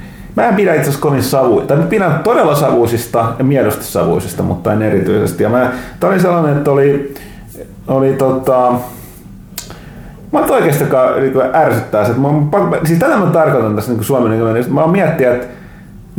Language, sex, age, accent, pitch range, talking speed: Finnish, male, 30-49, native, 110-150 Hz, 145 wpm